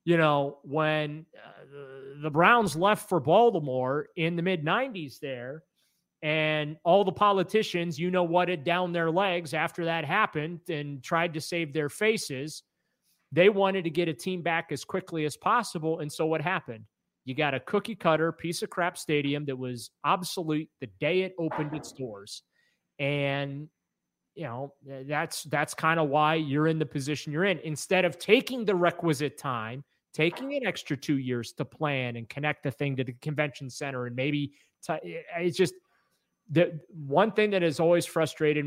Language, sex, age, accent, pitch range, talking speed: English, male, 30-49, American, 135-175 Hz, 170 wpm